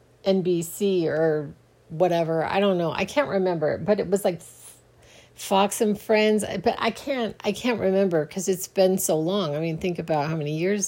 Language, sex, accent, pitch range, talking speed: English, female, American, 165-205 Hz, 190 wpm